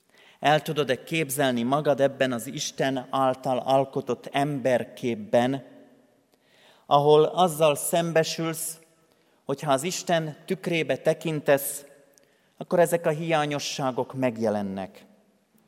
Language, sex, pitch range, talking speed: Hungarian, male, 130-165 Hz, 90 wpm